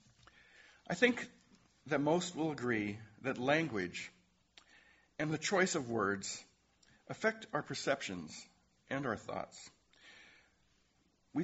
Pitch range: 110-170 Hz